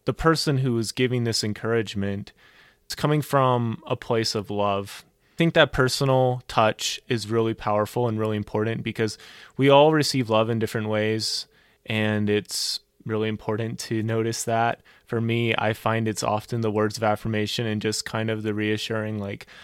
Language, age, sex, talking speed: English, 20-39, male, 175 wpm